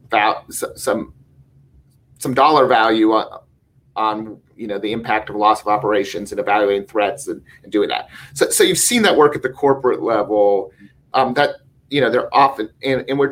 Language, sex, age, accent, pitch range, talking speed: English, male, 40-59, American, 110-165 Hz, 185 wpm